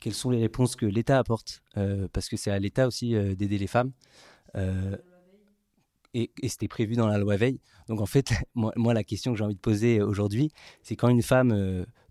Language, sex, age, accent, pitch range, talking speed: French, male, 20-39, French, 105-130 Hz, 225 wpm